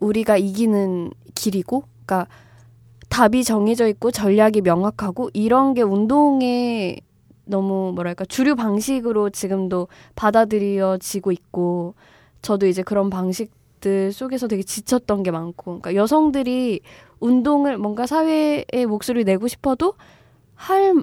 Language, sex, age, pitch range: Korean, female, 20-39, 195-250 Hz